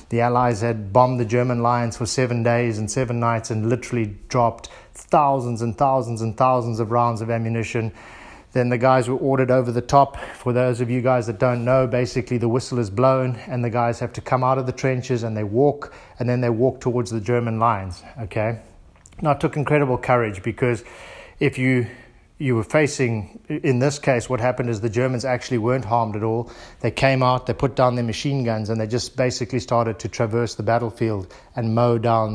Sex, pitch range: male, 115-130 Hz